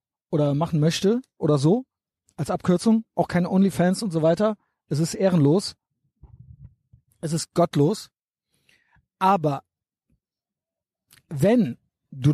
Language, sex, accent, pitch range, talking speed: German, male, German, 145-175 Hz, 105 wpm